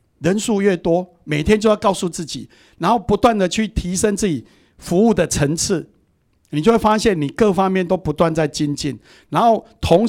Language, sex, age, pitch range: Chinese, male, 60-79, 150-205 Hz